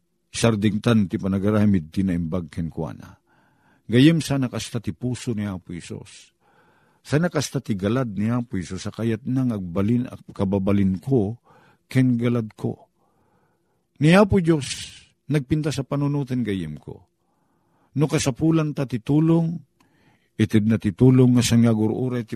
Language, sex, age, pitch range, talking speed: Filipino, male, 50-69, 100-145 Hz, 135 wpm